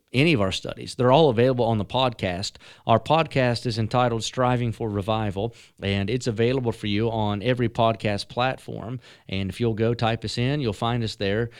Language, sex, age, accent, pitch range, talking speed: English, male, 40-59, American, 110-125 Hz, 190 wpm